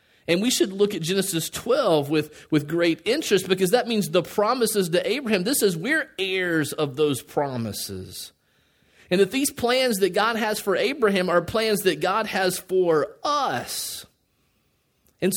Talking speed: 165 wpm